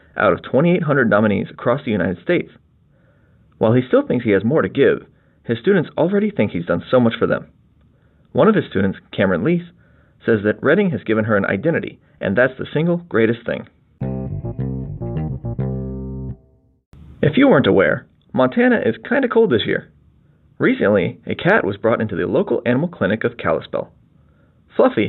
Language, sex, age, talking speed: English, male, 40-59, 170 wpm